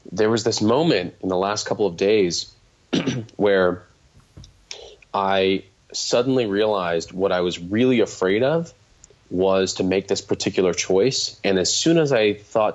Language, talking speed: English, 150 wpm